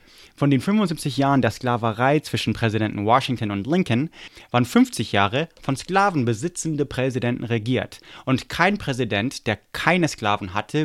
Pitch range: 110-135 Hz